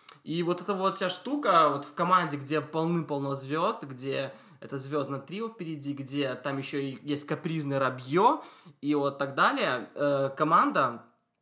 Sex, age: male, 20-39